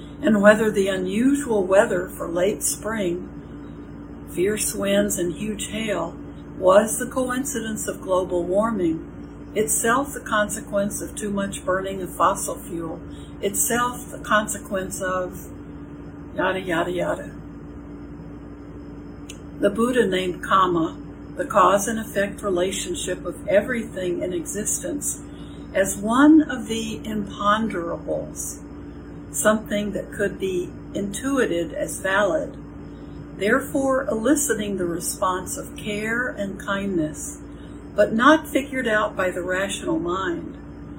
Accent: American